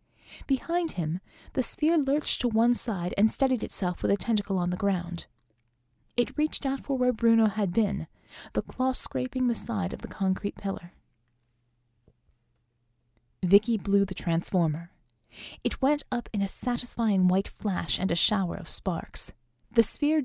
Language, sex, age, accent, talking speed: English, female, 30-49, American, 155 wpm